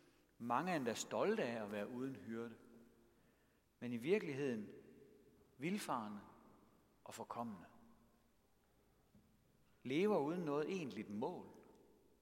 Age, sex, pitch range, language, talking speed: 60-79, male, 120-195 Hz, Danish, 95 wpm